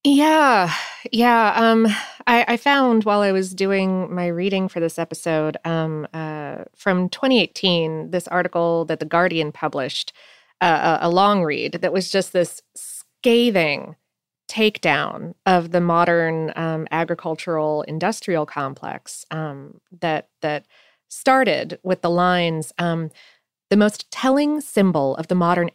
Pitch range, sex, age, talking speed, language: 165-215 Hz, female, 30-49, 130 wpm, English